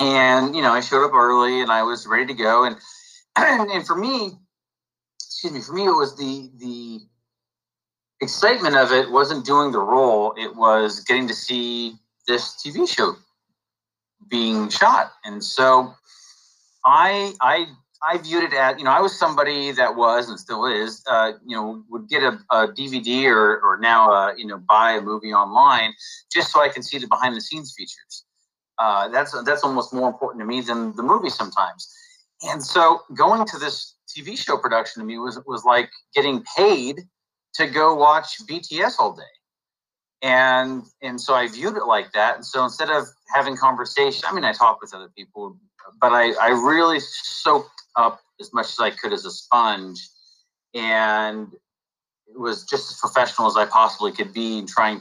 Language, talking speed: English, 185 wpm